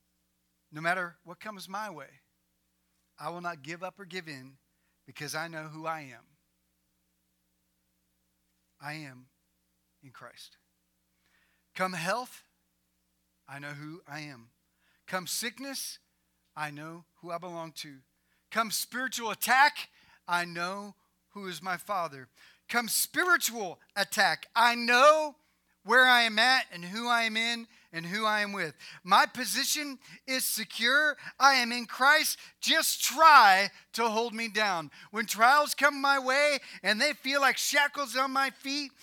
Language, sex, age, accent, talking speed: English, male, 40-59, American, 145 wpm